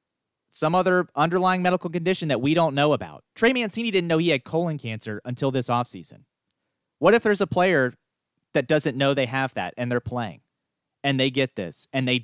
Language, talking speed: English, 205 wpm